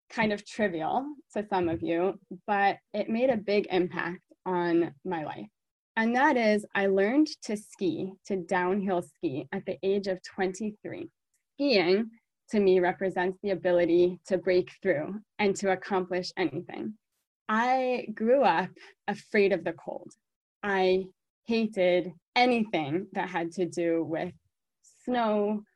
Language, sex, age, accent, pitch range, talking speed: English, female, 20-39, American, 180-210 Hz, 140 wpm